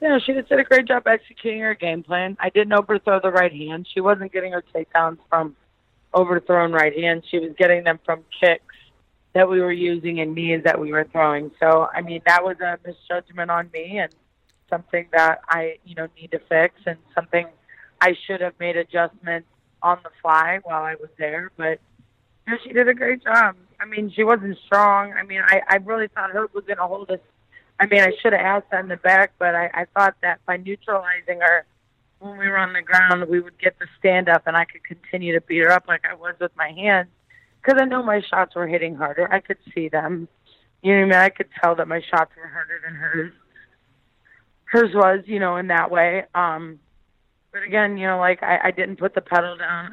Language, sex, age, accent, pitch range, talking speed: English, female, 30-49, American, 165-195 Hz, 230 wpm